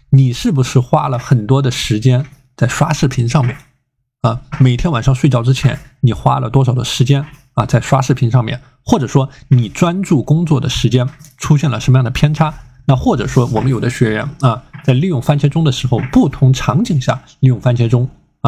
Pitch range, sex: 125-150 Hz, male